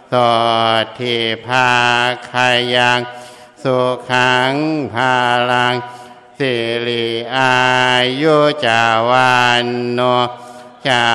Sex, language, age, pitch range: male, Thai, 60-79, 120-125 Hz